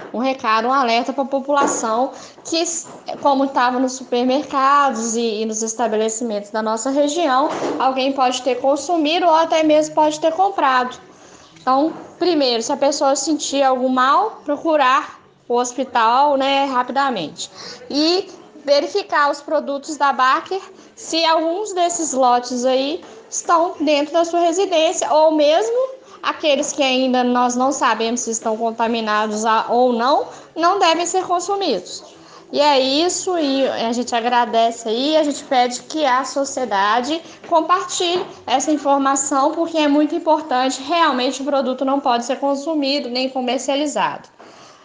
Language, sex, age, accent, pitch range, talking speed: Portuguese, female, 10-29, Brazilian, 240-310 Hz, 140 wpm